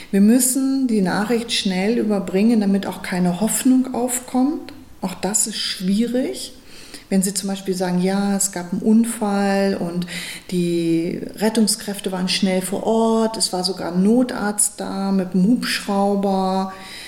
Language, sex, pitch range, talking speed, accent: German, female, 185-220 Hz, 145 wpm, German